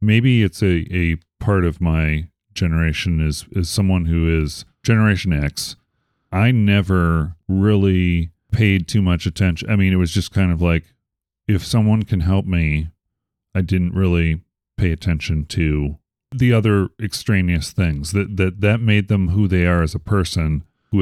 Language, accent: English, American